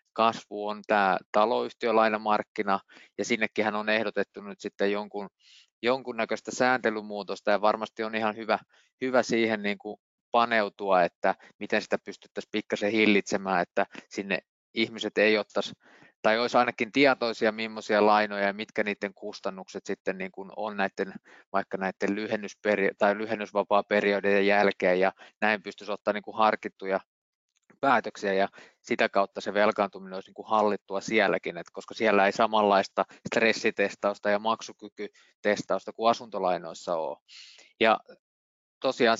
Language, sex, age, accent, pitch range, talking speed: Finnish, male, 20-39, native, 100-115 Hz, 130 wpm